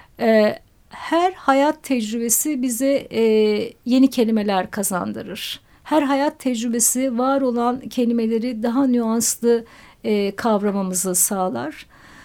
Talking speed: 85 wpm